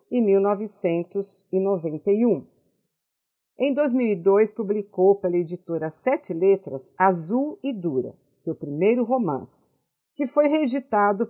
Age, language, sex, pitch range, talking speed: 50-69, Portuguese, female, 185-230 Hz, 95 wpm